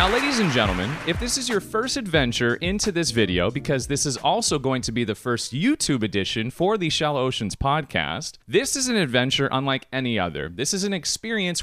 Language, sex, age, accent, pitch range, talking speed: English, male, 30-49, American, 110-160 Hz, 205 wpm